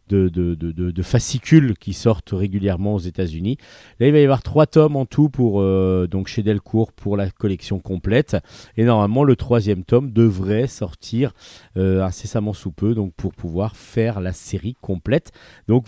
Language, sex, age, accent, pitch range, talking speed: French, male, 40-59, French, 95-135 Hz, 180 wpm